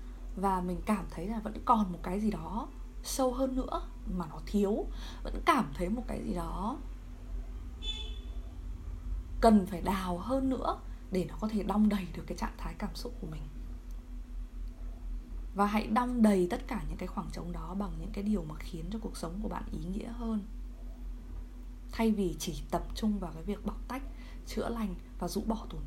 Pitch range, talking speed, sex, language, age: 160-225 Hz, 195 wpm, female, Vietnamese, 20-39